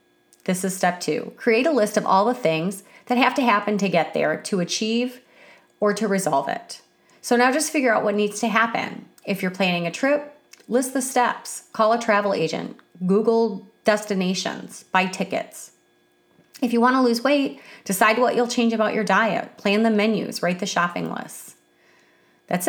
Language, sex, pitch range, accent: English, female, 190-245 Hz, American